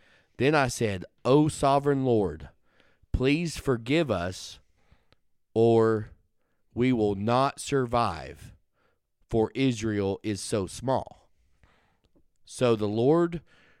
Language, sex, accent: English, male, American